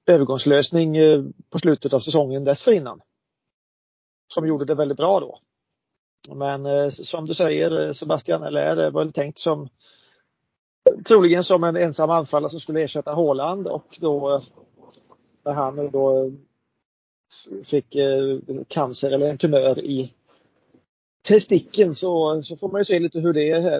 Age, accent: 30-49, native